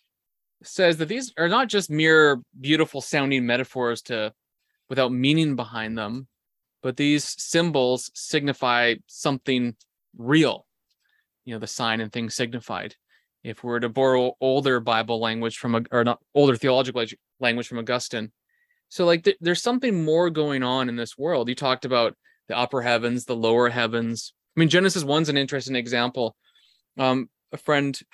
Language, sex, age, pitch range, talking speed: English, male, 20-39, 120-155 Hz, 155 wpm